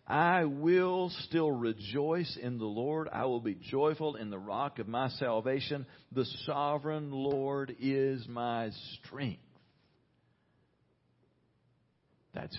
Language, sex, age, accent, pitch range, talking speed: English, male, 50-69, American, 105-135 Hz, 115 wpm